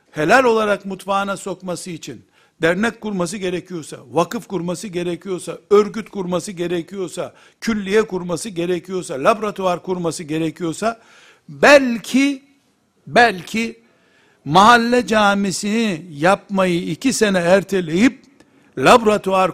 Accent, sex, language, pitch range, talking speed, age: native, male, Turkish, 170-225 Hz, 90 wpm, 60-79